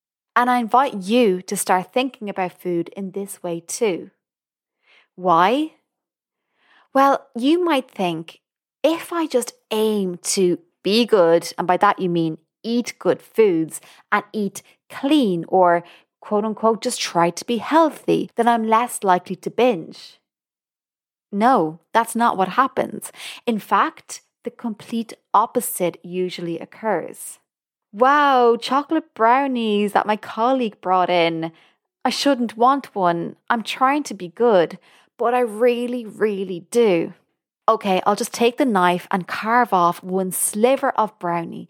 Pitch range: 180-240 Hz